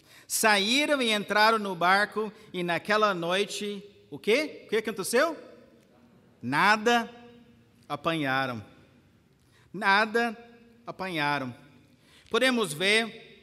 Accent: Brazilian